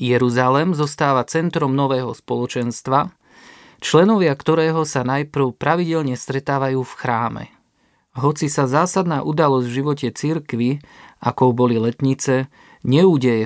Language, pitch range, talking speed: Slovak, 125-150 Hz, 105 wpm